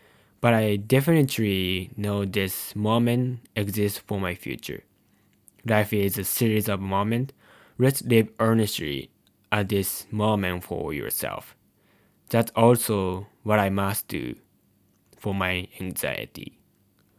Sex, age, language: male, 10-29, English